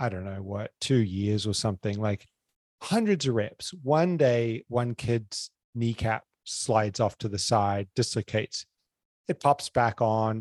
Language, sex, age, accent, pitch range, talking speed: English, male, 30-49, American, 110-130 Hz, 155 wpm